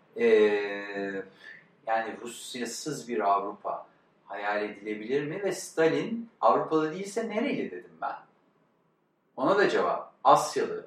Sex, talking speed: male, 105 wpm